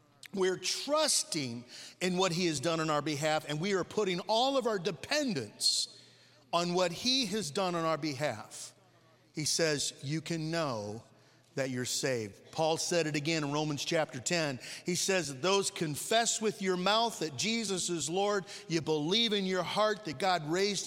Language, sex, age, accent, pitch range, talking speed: English, male, 50-69, American, 145-195 Hz, 175 wpm